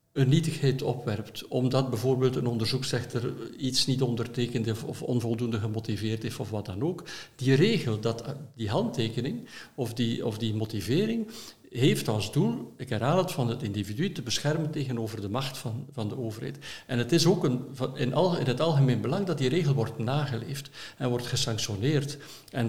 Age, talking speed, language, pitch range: 60-79, 170 wpm, Dutch, 115-140 Hz